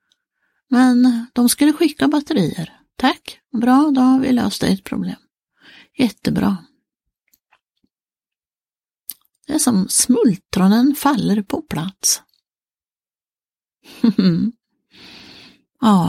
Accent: native